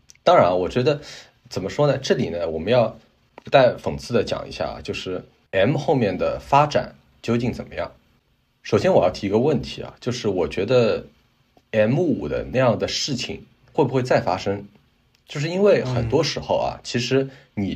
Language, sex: Chinese, male